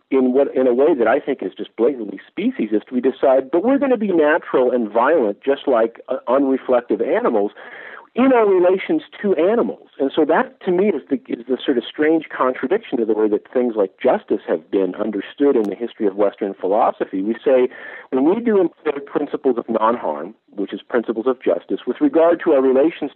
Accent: American